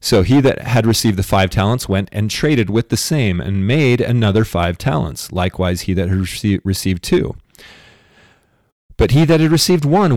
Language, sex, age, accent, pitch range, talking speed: English, male, 40-59, American, 95-130 Hz, 185 wpm